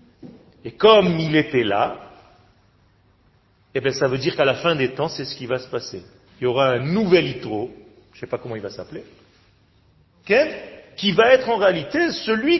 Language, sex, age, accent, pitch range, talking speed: French, male, 40-59, French, 120-185 Hz, 190 wpm